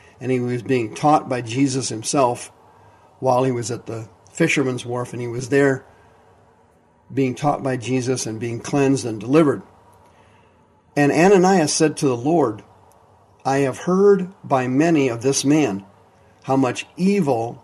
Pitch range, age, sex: 110-145 Hz, 50-69, male